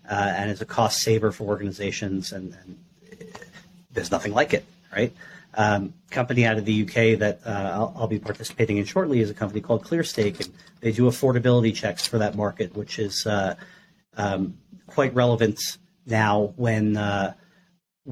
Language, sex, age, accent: English, male, 40-59, American